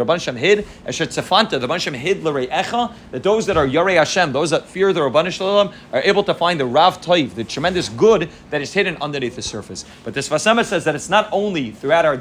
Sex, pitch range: male, 150-200 Hz